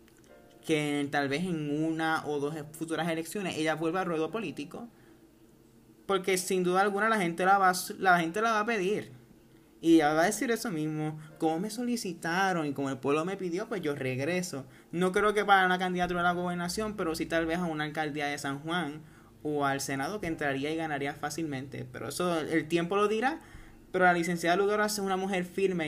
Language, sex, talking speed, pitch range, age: Spanish, male, 205 wpm, 140-175 Hz, 20-39